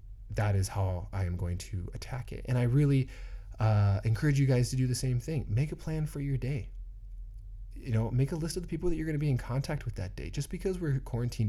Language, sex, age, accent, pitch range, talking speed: English, male, 20-39, American, 100-120 Hz, 255 wpm